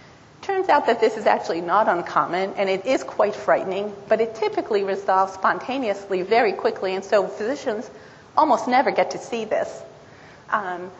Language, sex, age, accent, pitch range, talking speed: English, female, 40-59, American, 190-270 Hz, 165 wpm